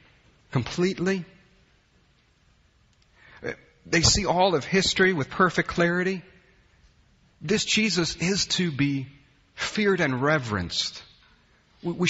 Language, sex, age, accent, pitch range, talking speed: English, male, 40-59, American, 110-165 Hz, 90 wpm